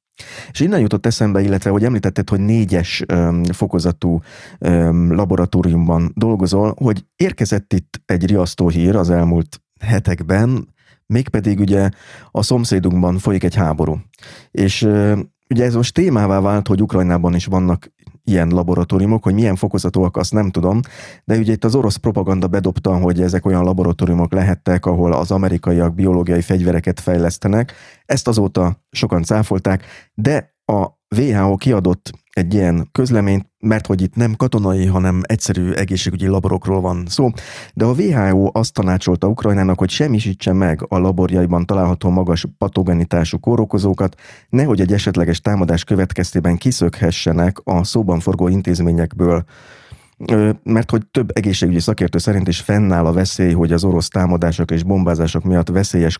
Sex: male